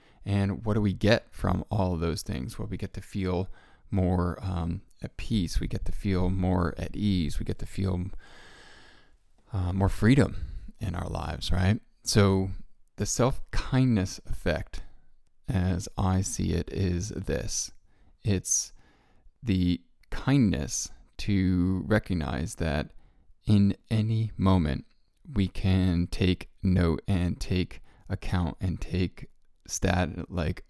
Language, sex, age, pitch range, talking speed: English, male, 20-39, 90-105 Hz, 130 wpm